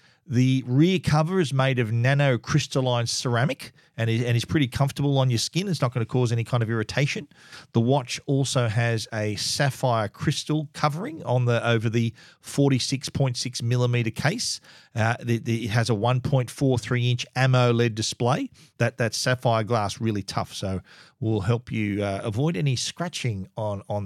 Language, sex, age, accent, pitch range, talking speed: English, male, 40-59, Australian, 115-140 Hz, 175 wpm